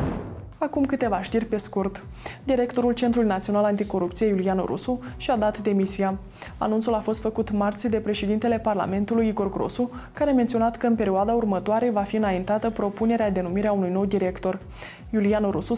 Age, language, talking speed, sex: 20-39, Romanian, 165 wpm, female